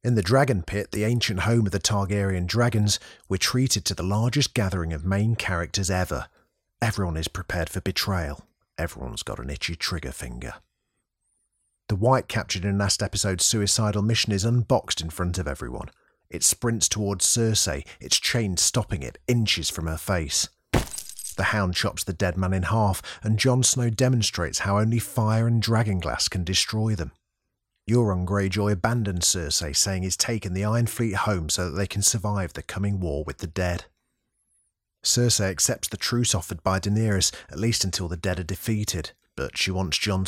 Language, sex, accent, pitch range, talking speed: English, male, British, 90-110 Hz, 175 wpm